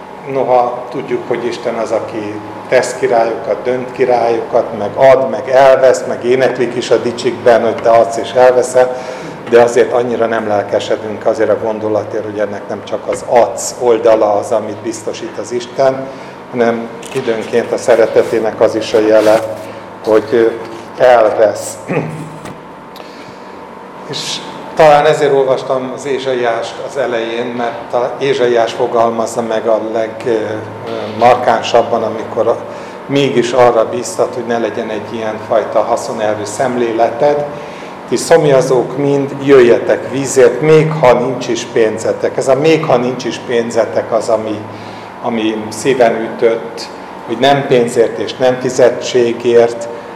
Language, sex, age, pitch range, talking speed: Hungarian, male, 50-69, 115-130 Hz, 130 wpm